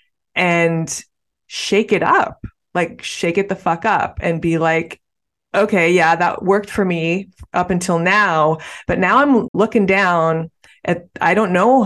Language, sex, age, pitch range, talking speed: English, female, 20-39, 160-205 Hz, 155 wpm